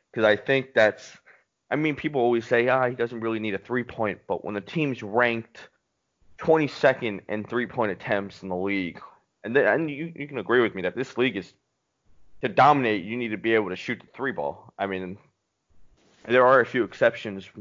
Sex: male